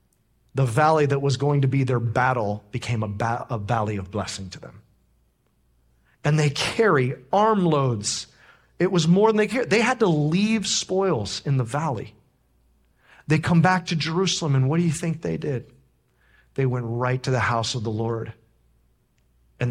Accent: American